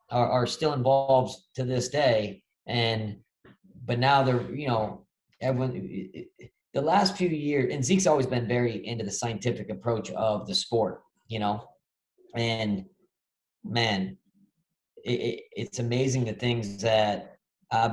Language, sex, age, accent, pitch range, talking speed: English, male, 40-59, American, 110-135 Hz, 145 wpm